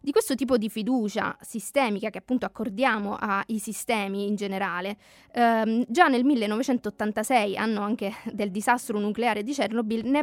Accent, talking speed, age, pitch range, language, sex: native, 145 wpm, 20-39, 210-255 Hz, Italian, female